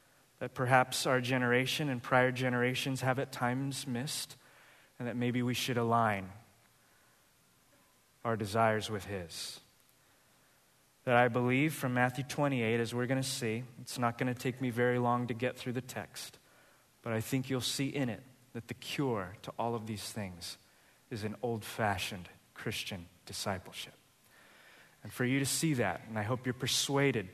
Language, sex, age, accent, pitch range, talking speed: English, male, 20-39, American, 115-135 Hz, 165 wpm